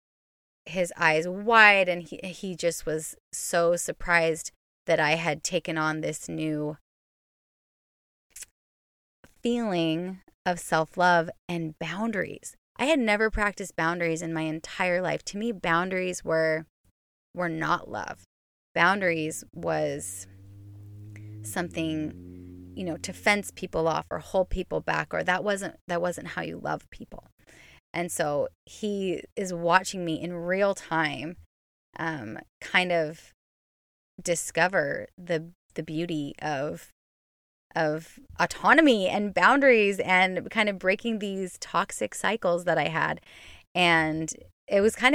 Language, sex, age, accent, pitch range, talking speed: English, female, 20-39, American, 155-185 Hz, 125 wpm